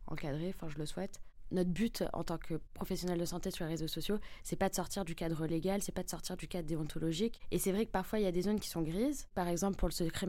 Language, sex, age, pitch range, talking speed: French, female, 20-39, 170-195 Hz, 285 wpm